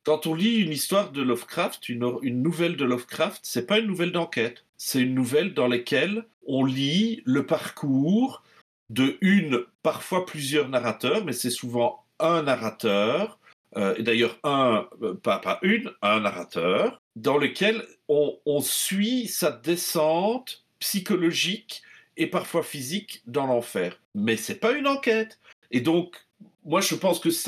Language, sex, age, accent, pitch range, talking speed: French, male, 50-69, French, 130-205 Hz, 155 wpm